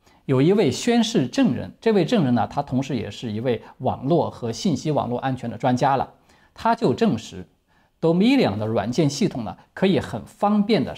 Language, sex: Chinese, male